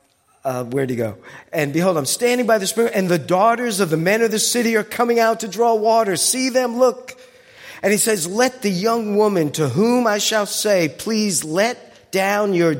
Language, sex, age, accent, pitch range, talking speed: English, male, 50-69, American, 175-230 Hz, 210 wpm